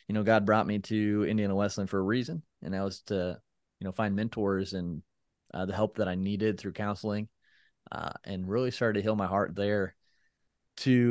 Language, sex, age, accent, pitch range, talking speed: English, male, 20-39, American, 95-110 Hz, 205 wpm